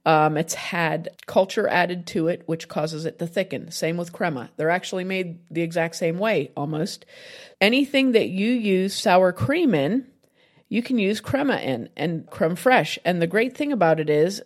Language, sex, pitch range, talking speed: English, female, 170-225 Hz, 185 wpm